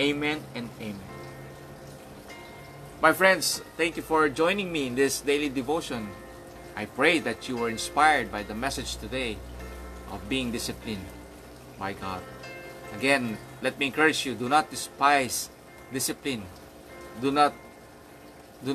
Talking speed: 130 wpm